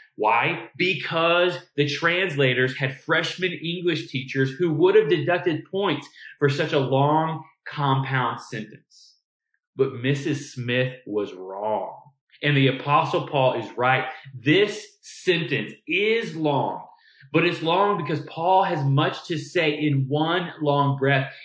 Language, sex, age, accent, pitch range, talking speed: English, male, 30-49, American, 140-175 Hz, 130 wpm